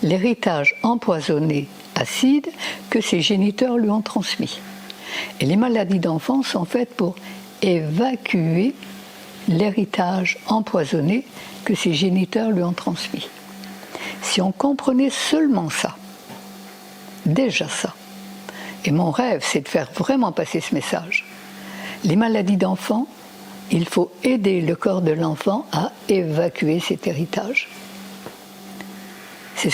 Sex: female